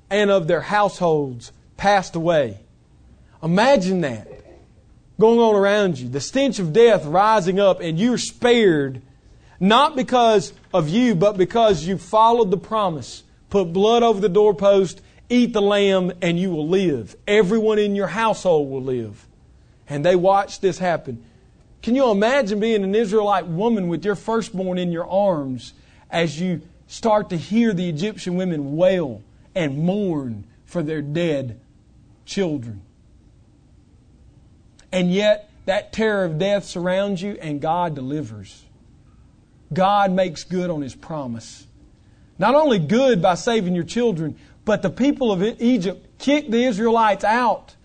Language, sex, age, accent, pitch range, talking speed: English, male, 40-59, American, 170-225 Hz, 145 wpm